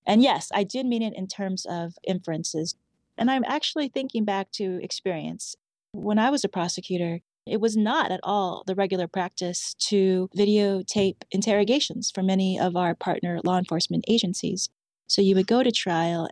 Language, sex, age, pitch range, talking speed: English, female, 30-49, 180-220 Hz, 175 wpm